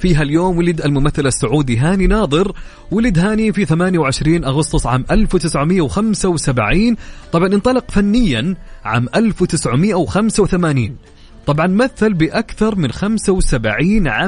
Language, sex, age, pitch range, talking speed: English, male, 30-49, 130-185 Hz, 100 wpm